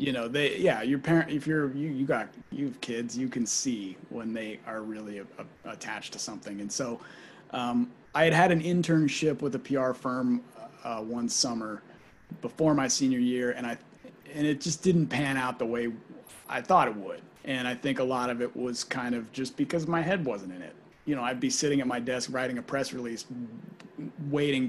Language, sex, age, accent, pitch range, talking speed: English, male, 30-49, American, 120-165 Hz, 210 wpm